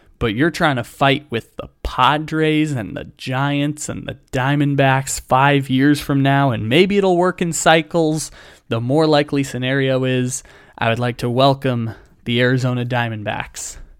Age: 20-39